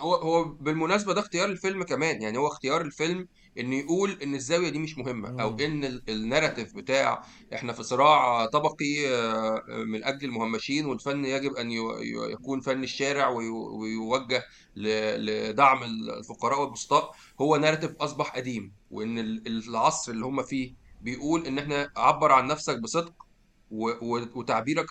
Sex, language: male, Arabic